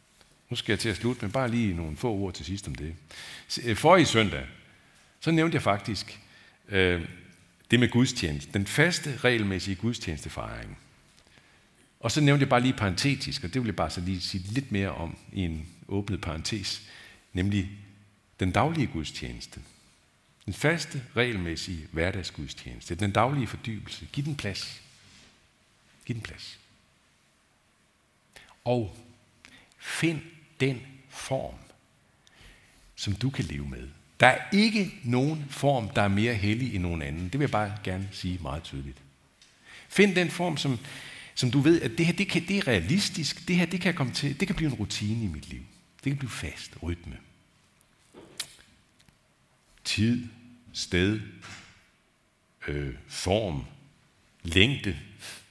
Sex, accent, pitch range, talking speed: male, native, 90-130 Hz, 150 wpm